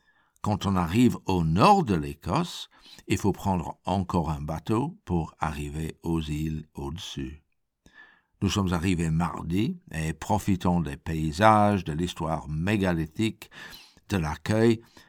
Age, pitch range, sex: 60-79, 80-105 Hz, male